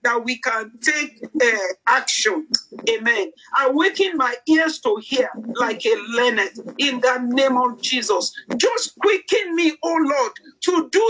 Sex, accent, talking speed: male, Nigerian, 150 wpm